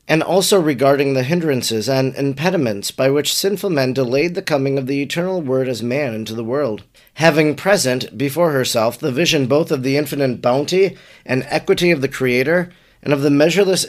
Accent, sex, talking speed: American, male, 185 wpm